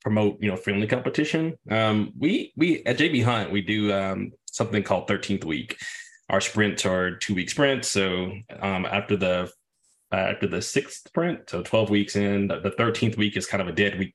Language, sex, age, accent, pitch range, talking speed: English, male, 20-39, American, 90-105 Hz, 200 wpm